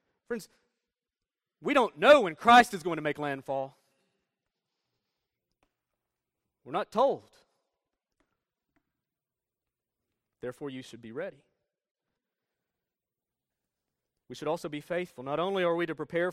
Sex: male